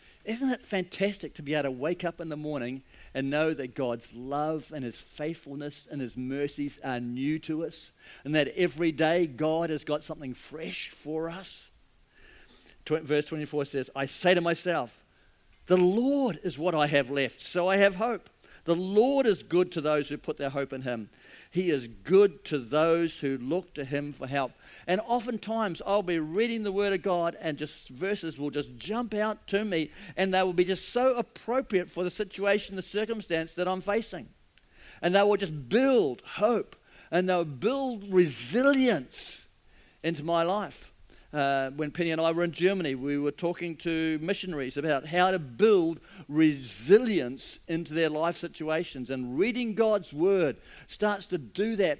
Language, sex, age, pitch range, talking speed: English, male, 50-69, 150-200 Hz, 180 wpm